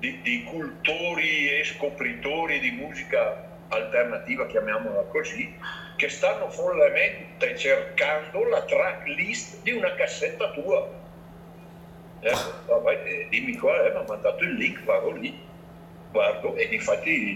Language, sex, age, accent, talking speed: Italian, male, 60-79, native, 120 wpm